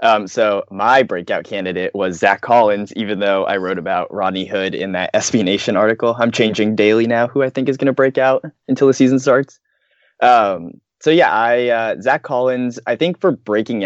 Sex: male